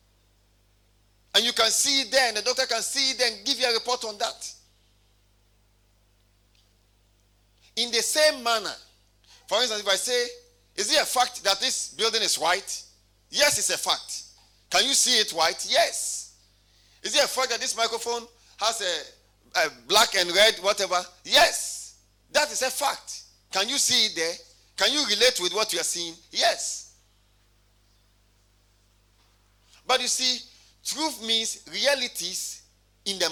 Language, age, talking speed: English, 50-69, 155 wpm